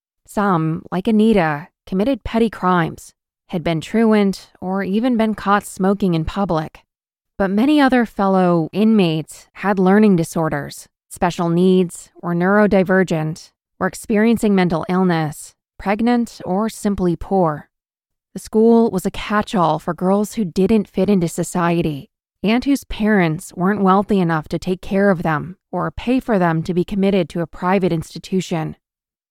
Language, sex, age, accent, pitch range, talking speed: English, female, 20-39, American, 170-210 Hz, 145 wpm